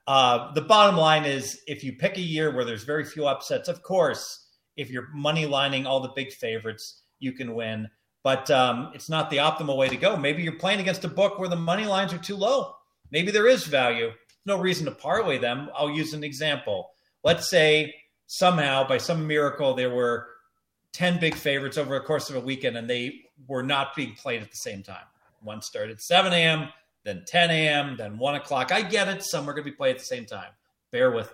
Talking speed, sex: 220 wpm, male